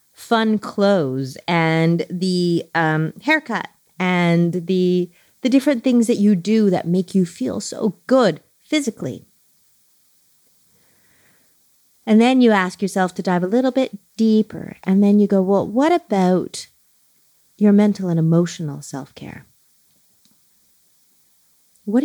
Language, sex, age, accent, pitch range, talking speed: English, female, 30-49, American, 170-220 Hz, 120 wpm